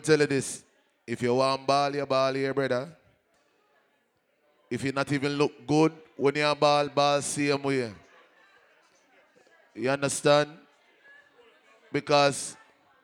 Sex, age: male, 20-39